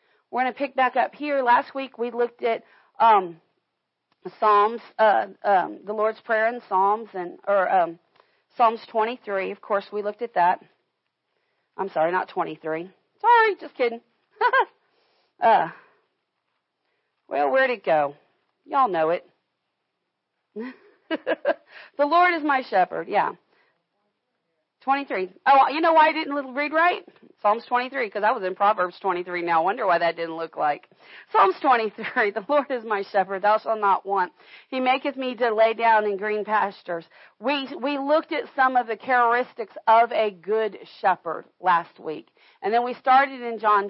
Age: 40-59